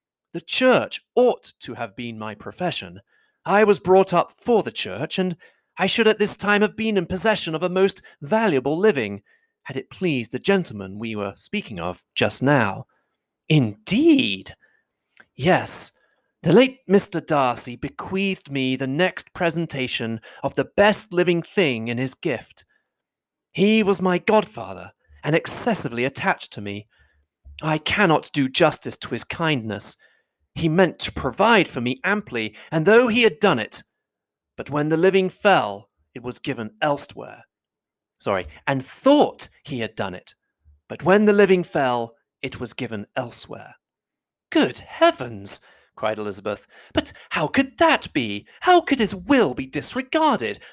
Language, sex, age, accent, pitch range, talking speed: English, male, 30-49, British, 120-205 Hz, 155 wpm